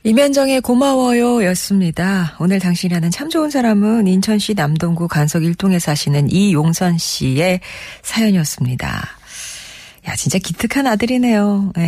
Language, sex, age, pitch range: Korean, female, 40-59, 150-200 Hz